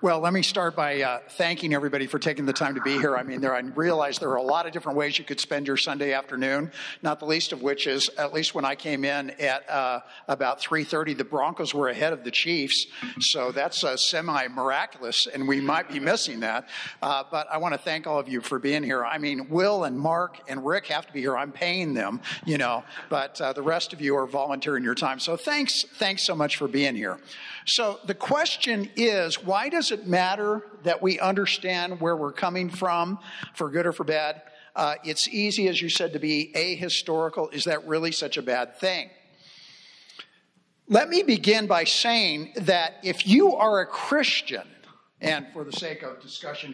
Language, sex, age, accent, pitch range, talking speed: English, male, 60-79, American, 140-190 Hz, 210 wpm